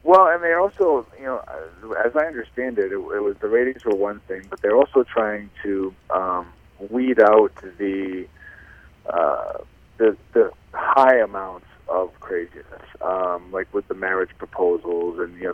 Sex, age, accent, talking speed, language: male, 40-59, American, 165 wpm, English